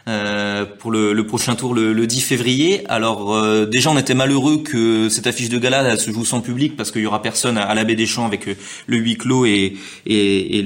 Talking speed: 235 wpm